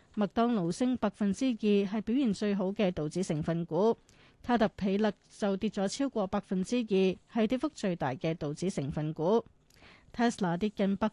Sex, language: female, Chinese